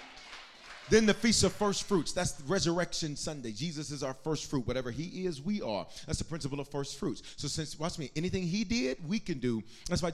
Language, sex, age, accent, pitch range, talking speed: English, male, 40-59, American, 155-225 Hz, 215 wpm